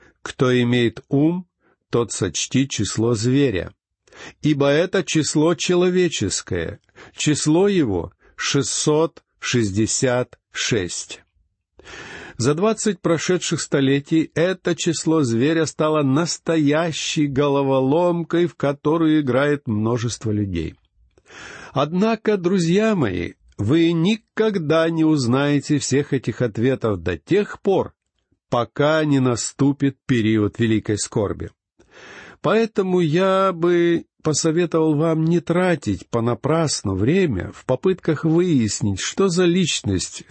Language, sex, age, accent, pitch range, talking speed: Russian, male, 50-69, native, 120-165 Hz, 95 wpm